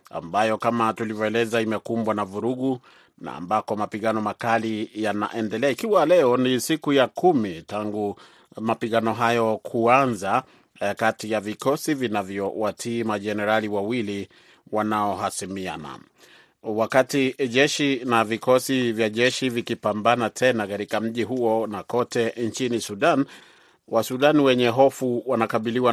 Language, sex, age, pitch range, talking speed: Swahili, male, 30-49, 110-125 Hz, 110 wpm